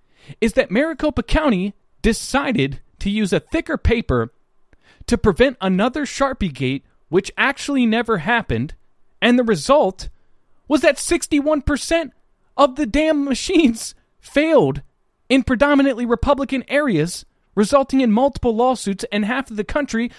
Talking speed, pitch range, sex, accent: 130 wpm, 195-280 Hz, male, American